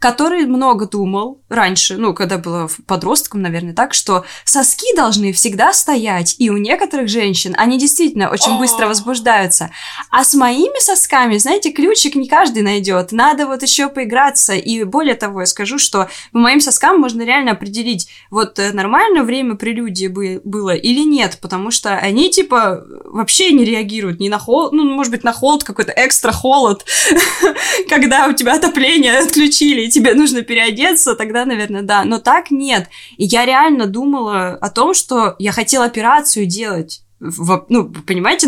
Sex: female